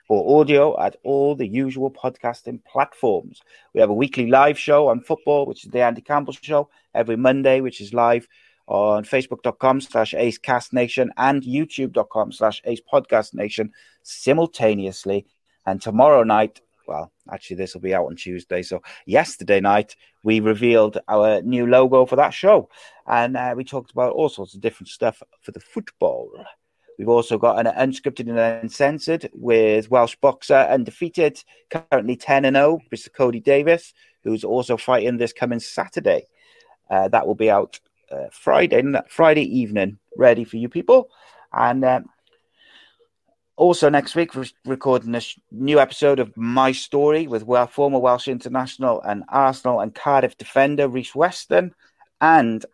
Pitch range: 115-145 Hz